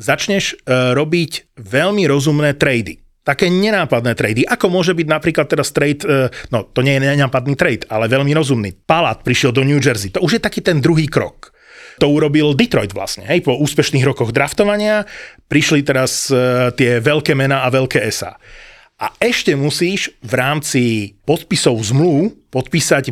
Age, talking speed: 30-49, 155 wpm